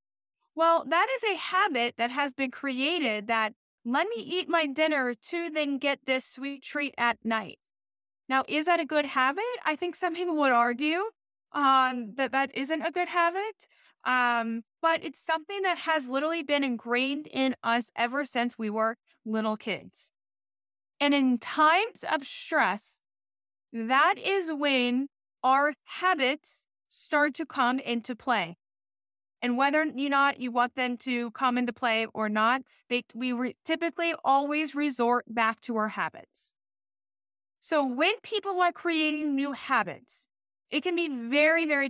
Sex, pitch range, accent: female, 235-320 Hz, American